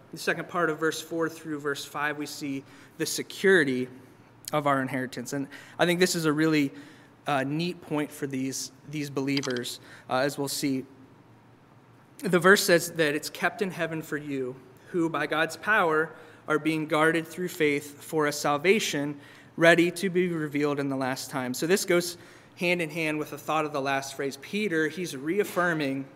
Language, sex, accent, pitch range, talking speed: English, male, American, 140-165 Hz, 185 wpm